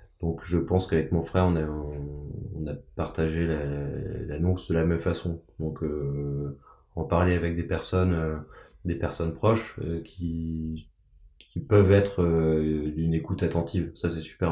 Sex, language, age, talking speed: male, French, 20-39, 170 wpm